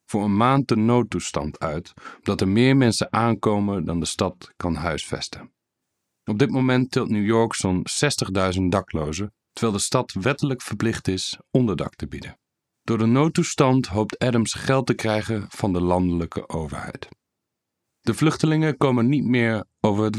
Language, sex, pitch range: English, male, 95-125 Hz